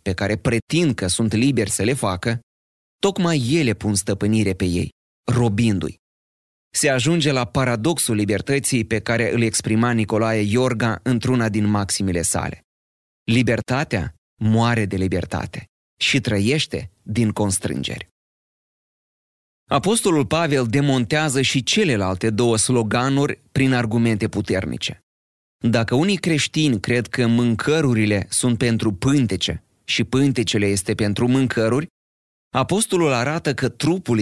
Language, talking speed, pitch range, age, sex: Romanian, 115 wpm, 105-130 Hz, 30-49, male